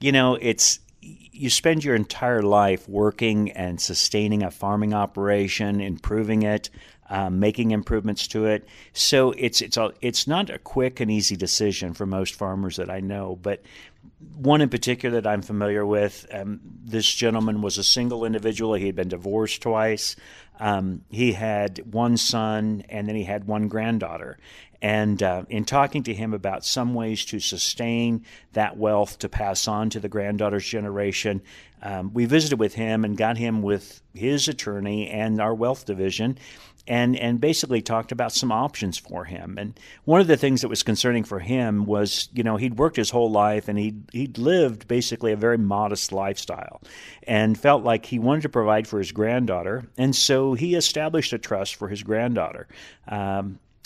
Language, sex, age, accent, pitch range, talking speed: English, male, 50-69, American, 100-120 Hz, 180 wpm